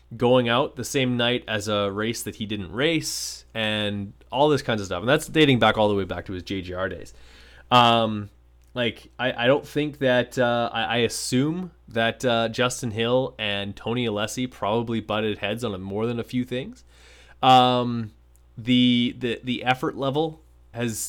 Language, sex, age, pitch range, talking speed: English, male, 20-39, 100-125 Hz, 185 wpm